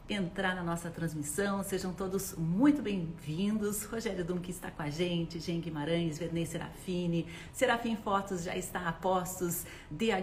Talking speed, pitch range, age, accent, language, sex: 145 wpm, 165-190 Hz, 40-59, Brazilian, Portuguese, female